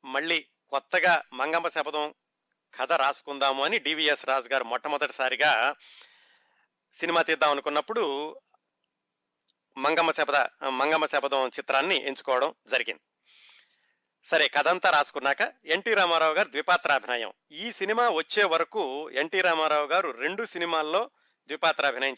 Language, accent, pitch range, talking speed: Telugu, native, 145-190 Hz, 110 wpm